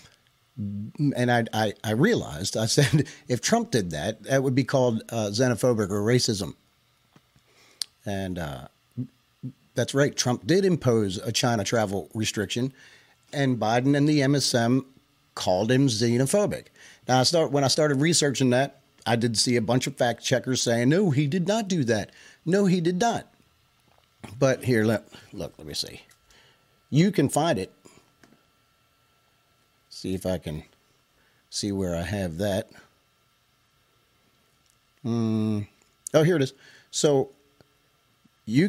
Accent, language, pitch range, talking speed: American, English, 110-135 Hz, 145 wpm